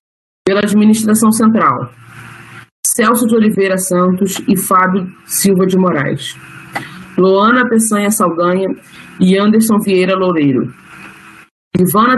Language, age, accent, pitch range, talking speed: Portuguese, 20-39, Brazilian, 185-220 Hz, 100 wpm